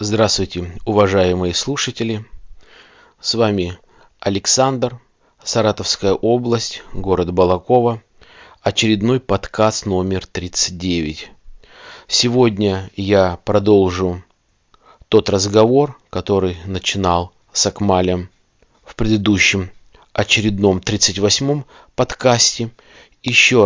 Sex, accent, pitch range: male, native, 95-115 Hz